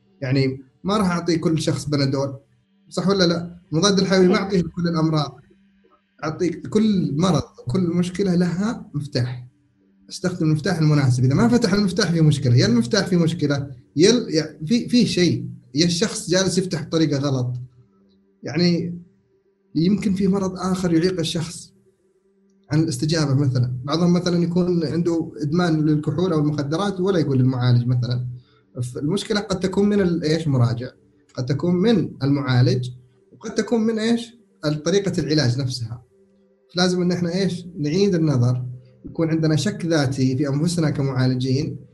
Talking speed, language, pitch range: 140 wpm, Arabic, 130-180 Hz